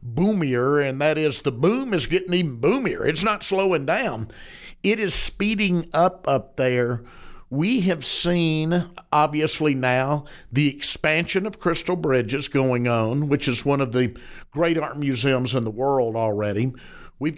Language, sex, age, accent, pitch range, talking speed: English, male, 50-69, American, 130-175 Hz, 155 wpm